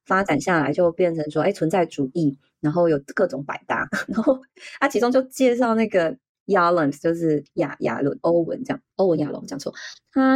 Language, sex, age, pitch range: Chinese, female, 20-39, 155-230 Hz